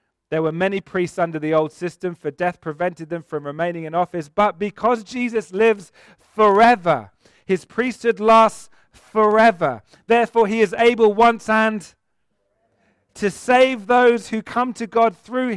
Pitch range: 180-235 Hz